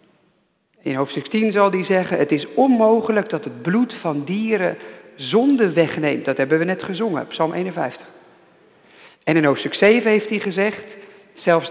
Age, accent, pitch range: 50-69, Dutch, 170-235 Hz